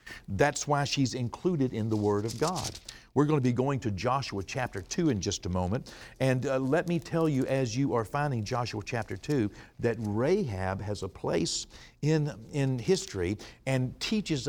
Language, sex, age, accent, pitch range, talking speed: English, male, 60-79, American, 95-140 Hz, 185 wpm